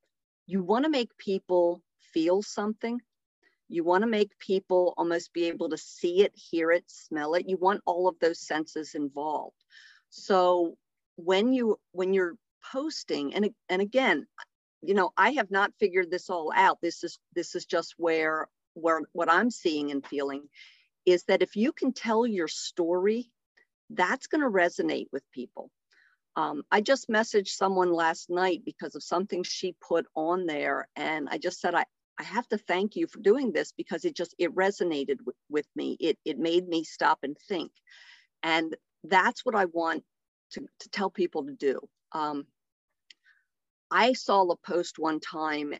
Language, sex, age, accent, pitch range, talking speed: English, female, 50-69, American, 165-205 Hz, 175 wpm